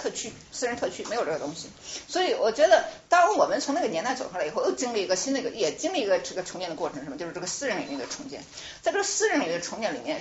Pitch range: 210-330 Hz